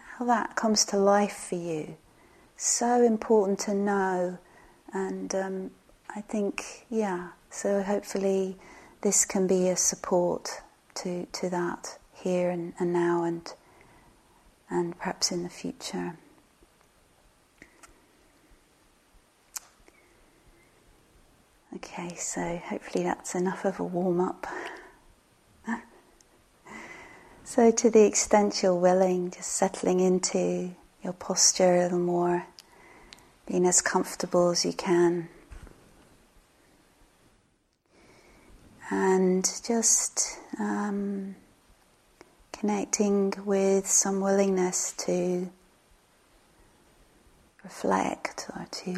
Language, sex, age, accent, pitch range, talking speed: English, female, 40-59, British, 175-200 Hz, 90 wpm